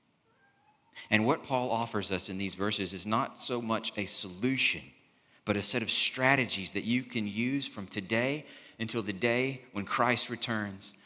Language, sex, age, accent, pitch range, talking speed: English, male, 30-49, American, 100-125 Hz, 170 wpm